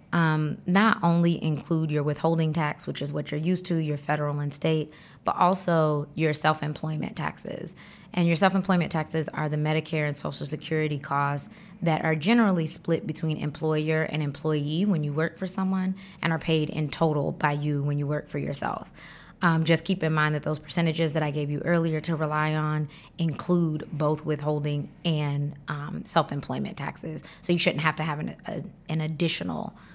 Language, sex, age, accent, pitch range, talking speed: English, female, 20-39, American, 150-175 Hz, 180 wpm